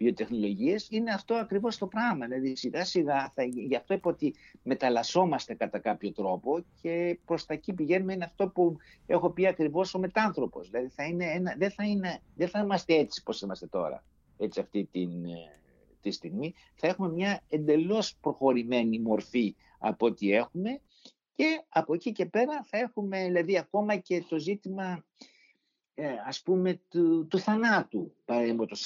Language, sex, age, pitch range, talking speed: Greek, male, 60-79, 120-185 Hz, 155 wpm